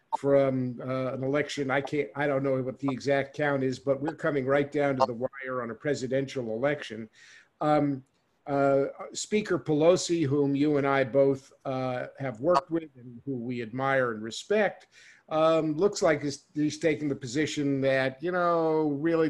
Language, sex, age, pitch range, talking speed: English, male, 50-69, 140-165 Hz, 175 wpm